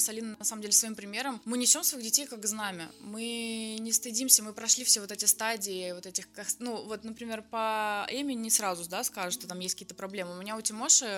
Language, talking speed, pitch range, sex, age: Russian, 225 wpm, 195-235 Hz, female, 20-39